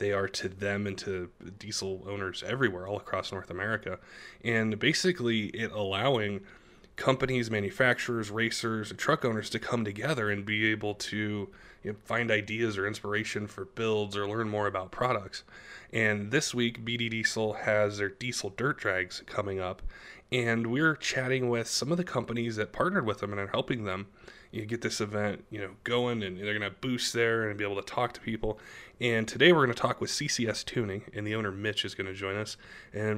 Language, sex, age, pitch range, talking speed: English, male, 20-39, 100-120 Hz, 200 wpm